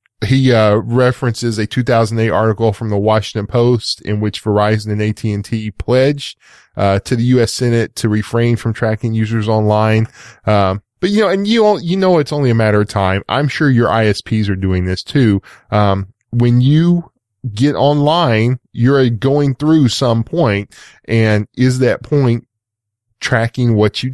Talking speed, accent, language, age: 165 wpm, American, English, 10-29